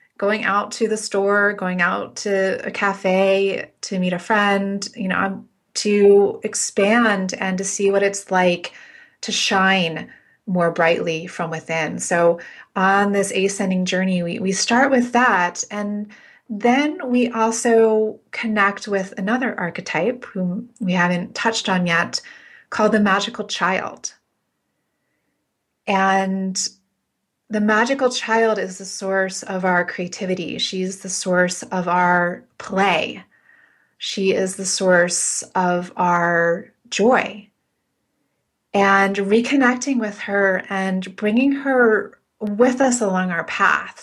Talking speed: 125 wpm